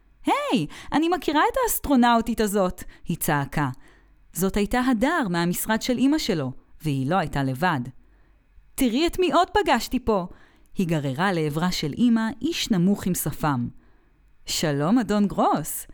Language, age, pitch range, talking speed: Hebrew, 20-39, 155-250 Hz, 145 wpm